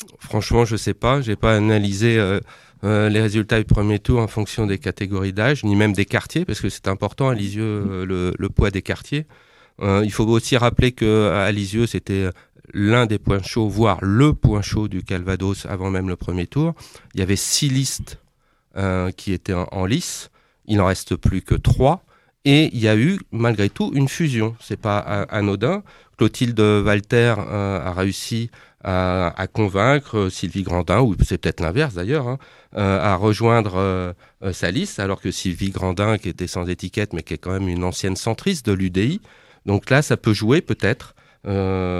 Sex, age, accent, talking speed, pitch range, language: male, 40-59, French, 195 wpm, 95-120 Hz, French